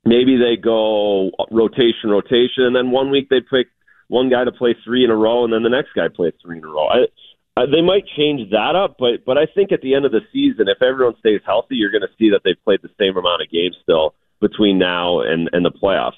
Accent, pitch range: American, 105-140 Hz